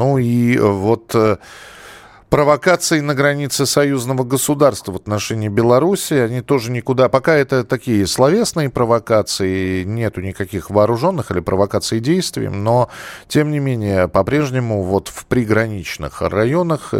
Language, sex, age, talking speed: Russian, male, 40-59, 125 wpm